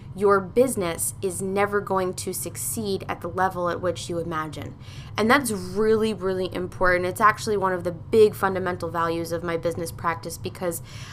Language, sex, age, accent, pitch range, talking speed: English, female, 20-39, American, 160-215 Hz, 175 wpm